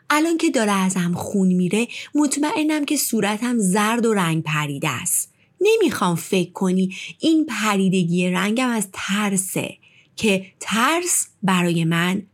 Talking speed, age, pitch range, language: 125 wpm, 30-49, 180-245 Hz, Persian